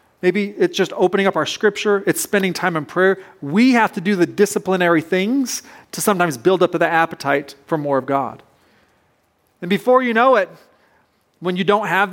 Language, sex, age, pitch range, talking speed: English, male, 30-49, 155-195 Hz, 190 wpm